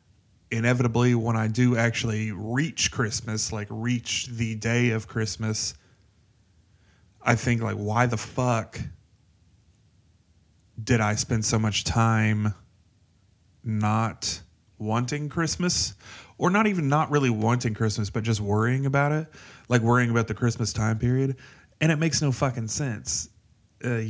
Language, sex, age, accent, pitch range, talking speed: English, male, 30-49, American, 100-120 Hz, 135 wpm